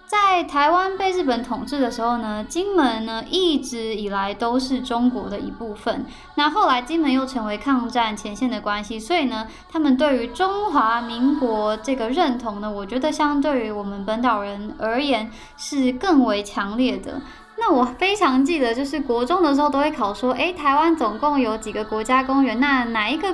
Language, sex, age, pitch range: Chinese, male, 10-29, 225-295 Hz